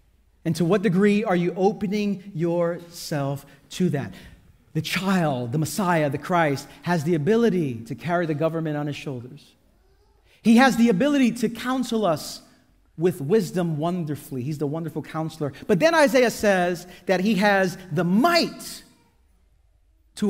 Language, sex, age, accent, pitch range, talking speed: English, male, 40-59, American, 155-235 Hz, 150 wpm